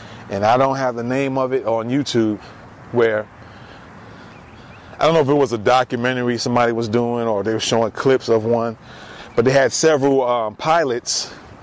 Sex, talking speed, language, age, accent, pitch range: male, 180 wpm, English, 30-49, American, 115-130 Hz